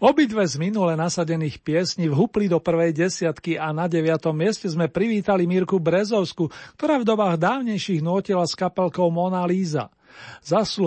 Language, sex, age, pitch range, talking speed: Slovak, male, 40-59, 150-185 Hz, 150 wpm